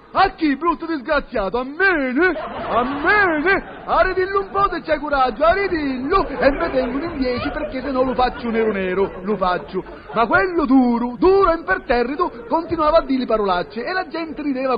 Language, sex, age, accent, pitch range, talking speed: Italian, male, 40-59, native, 245-330 Hz, 195 wpm